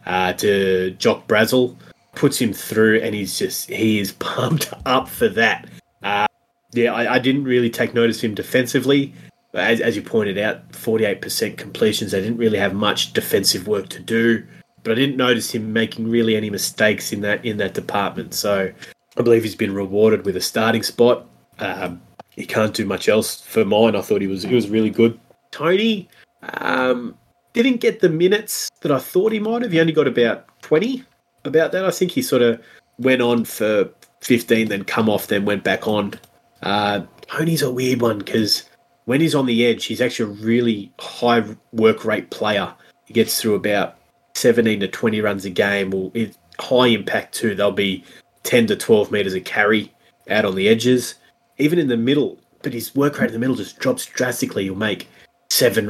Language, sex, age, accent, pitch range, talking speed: English, male, 20-39, Australian, 105-125 Hz, 195 wpm